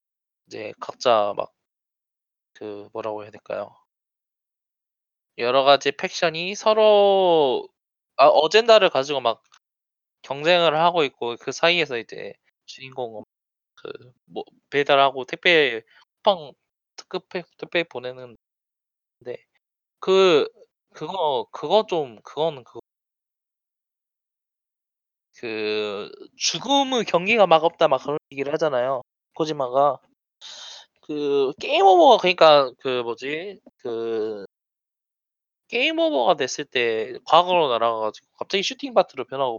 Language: Korean